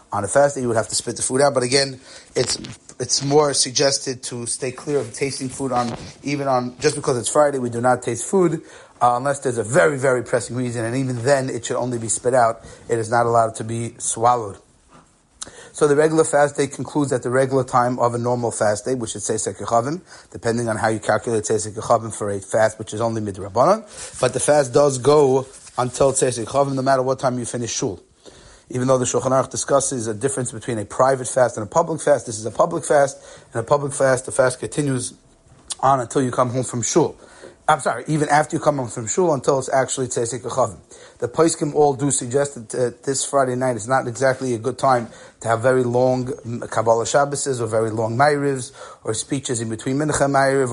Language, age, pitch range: English, 30-49, 120-140 Hz